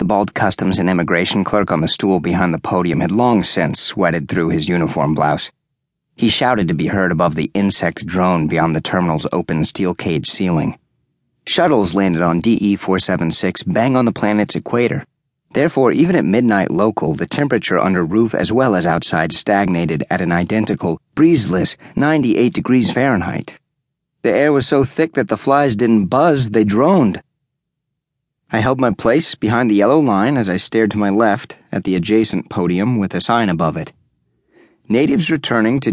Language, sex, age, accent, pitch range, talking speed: English, male, 30-49, American, 100-140 Hz, 175 wpm